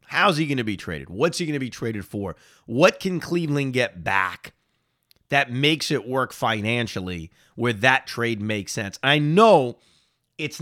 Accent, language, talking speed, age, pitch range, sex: American, English, 175 wpm, 30-49, 115-165 Hz, male